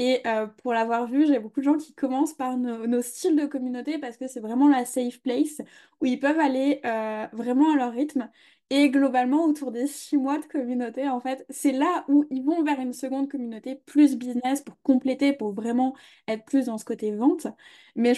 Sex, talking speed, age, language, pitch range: female, 215 wpm, 20-39, French, 240-290 Hz